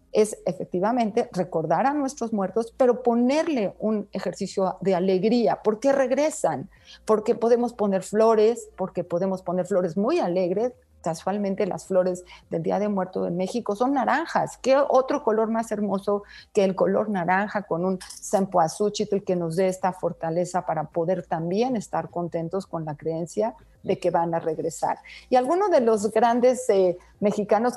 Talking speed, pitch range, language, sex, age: 160 wpm, 185-240 Hz, Spanish, female, 40-59